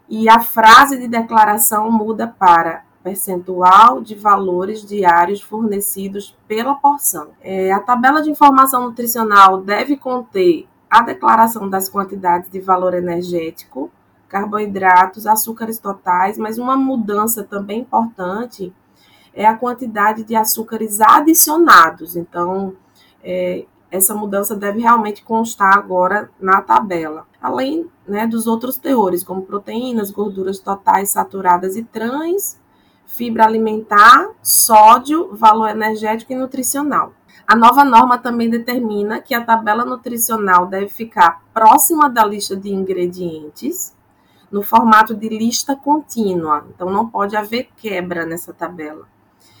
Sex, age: female, 20-39